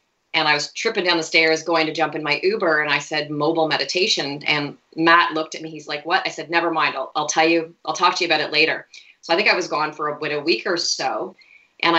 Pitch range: 150-170 Hz